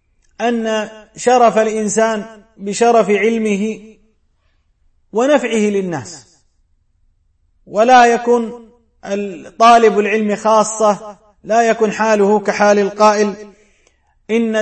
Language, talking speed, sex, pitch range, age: Arabic, 75 wpm, male, 195-225 Hz, 30-49